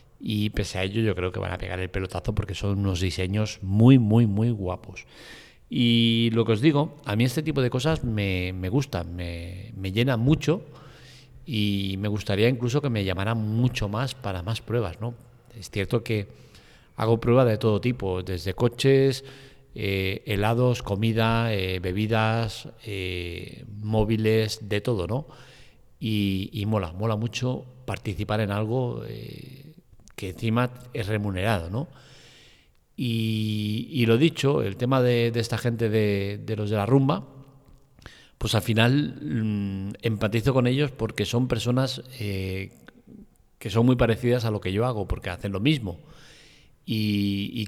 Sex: male